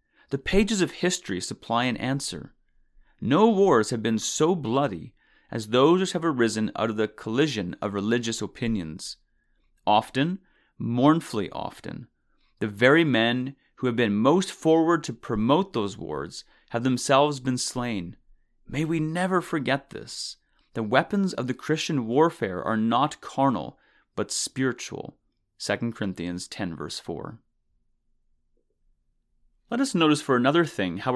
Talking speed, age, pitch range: 140 wpm, 30-49, 115-155 Hz